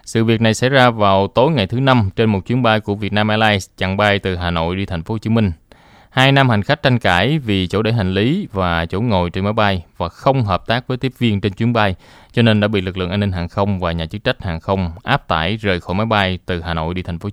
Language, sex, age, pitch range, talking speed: Vietnamese, male, 20-39, 95-120 Hz, 290 wpm